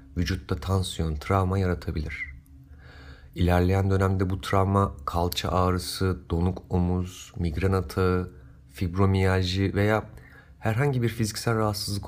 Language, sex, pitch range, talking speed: Turkish, male, 90-115 Hz, 100 wpm